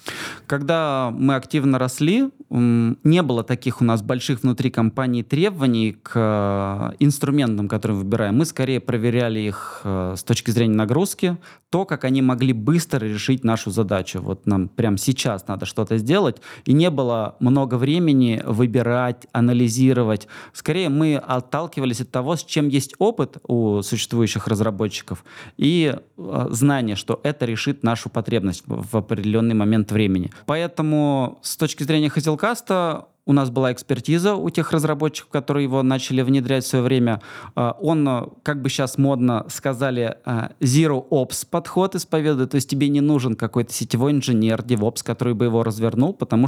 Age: 20-39